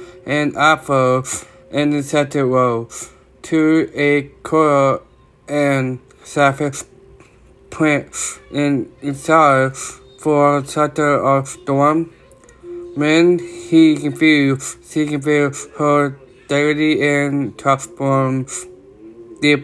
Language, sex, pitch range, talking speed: English, male, 135-150 Hz, 90 wpm